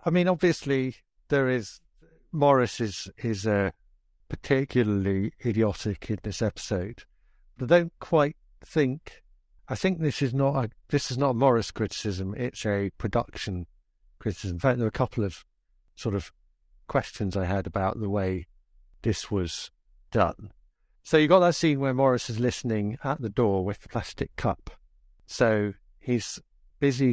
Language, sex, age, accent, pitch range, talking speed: English, male, 60-79, British, 95-130 Hz, 160 wpm